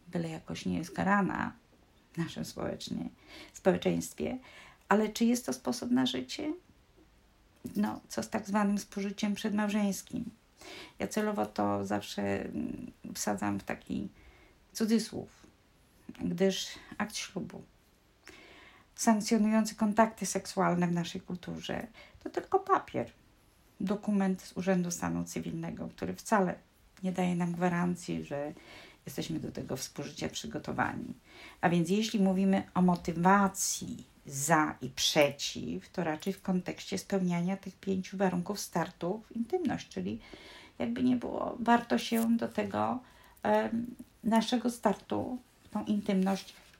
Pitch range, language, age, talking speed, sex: 160-220 Hz, Polish, 50-69, 120 wpm, female